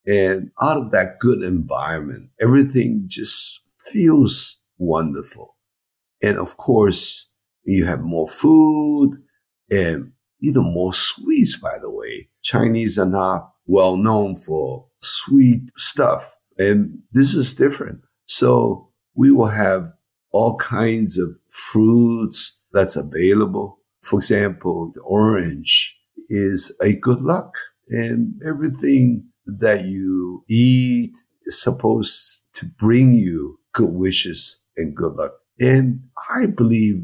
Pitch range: 95-135 Hz